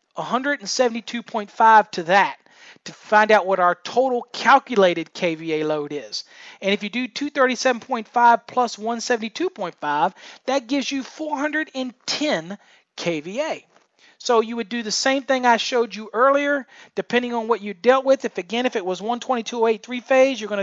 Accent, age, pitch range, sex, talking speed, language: American, 40-59, 200-255 Hz, male, 150 wpm, English